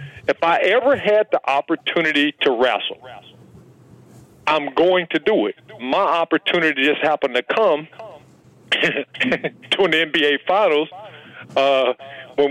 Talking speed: 120 wpm